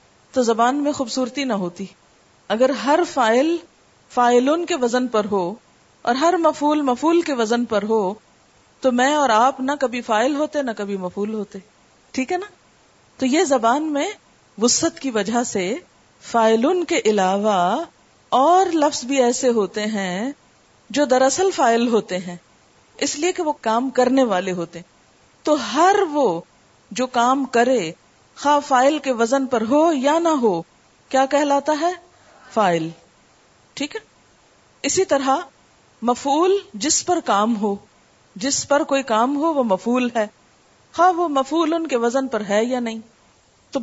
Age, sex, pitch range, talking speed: 40-59, female, 220-295 Hz, 155 wpm